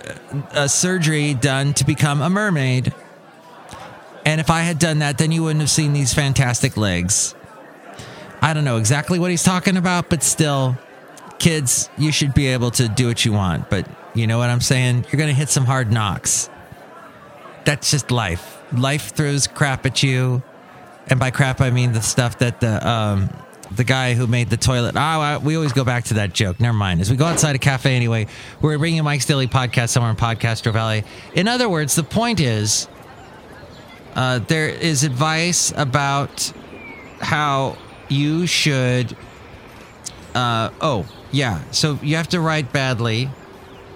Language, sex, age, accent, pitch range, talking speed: English, male, 30-49, American, 120-155 Hz, 175 wpm